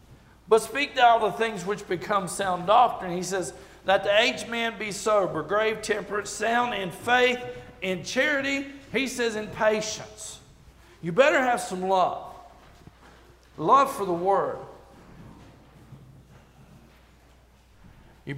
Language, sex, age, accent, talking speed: English, male, 50-69, American, 125 wpm